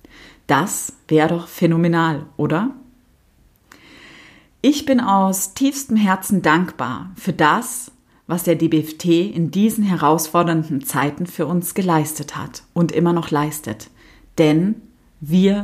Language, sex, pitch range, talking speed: German, female, 155-215 Hz, 115 wpm